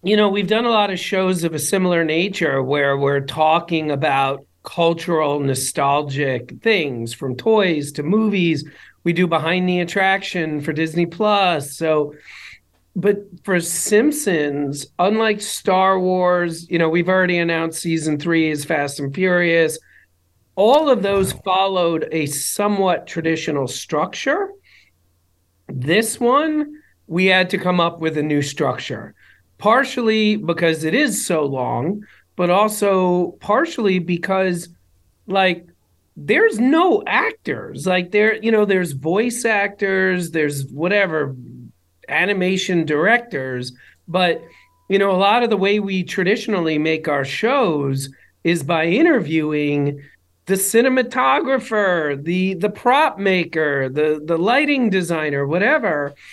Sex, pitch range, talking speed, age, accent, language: male, 150-200 Hz, 130 wpm, 40-59, American, English